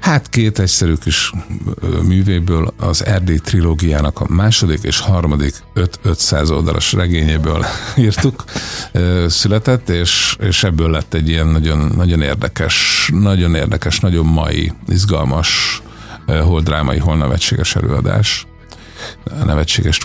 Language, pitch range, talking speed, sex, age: Hungarian, 80-105 Hz, 115 wpm, male, 50-69